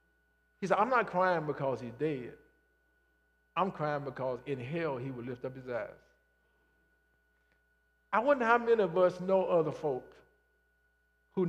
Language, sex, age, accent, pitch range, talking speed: English, male, 50-69, American, 150-210 Hz, 150 wpm